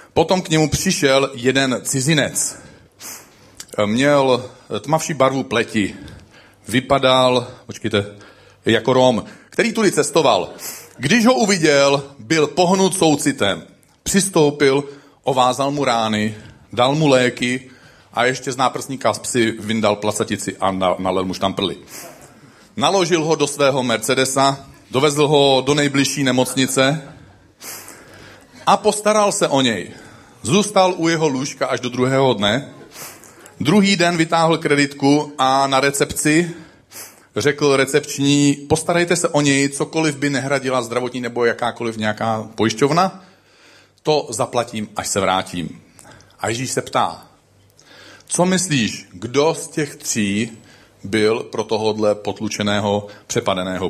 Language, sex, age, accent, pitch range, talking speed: Czech, male, 40-59, native, 110-145 Hz, 120 wpm